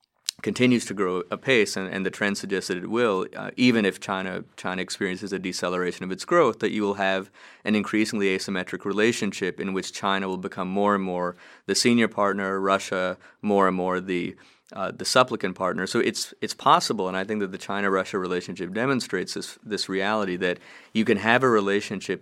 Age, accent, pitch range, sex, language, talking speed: 30-49, American, 90-105 Hz, male, English, 195 wpm